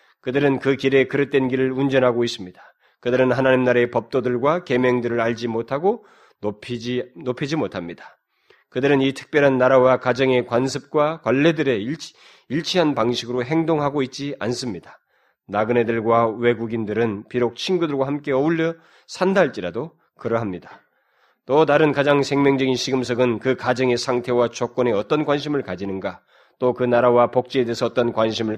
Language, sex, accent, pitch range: Korean, male, native, 115-145 Hz